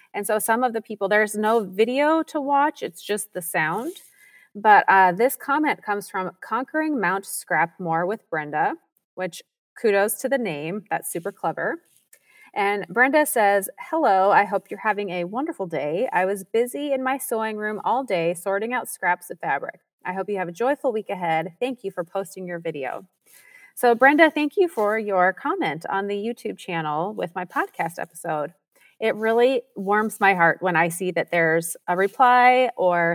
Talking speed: 185 wpm